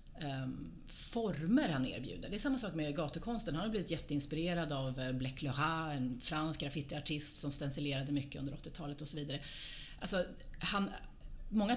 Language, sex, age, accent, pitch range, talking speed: Swedish, female, 30-49, native, 140-175 Hz, 155 wpm